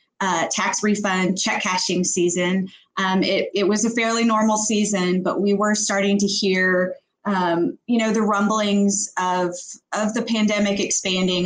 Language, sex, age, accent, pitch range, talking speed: English, female, 20-39, American, 180-210 Hz, 155 wpm